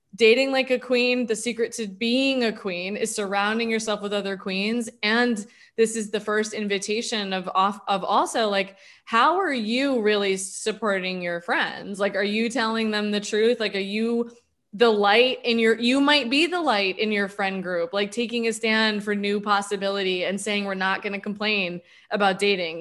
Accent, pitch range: American, 195-230 Hz